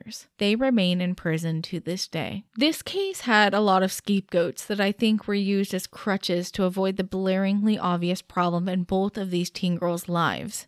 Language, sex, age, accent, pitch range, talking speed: English, female, 10-29, American, 180-215 Hz, 190 wpm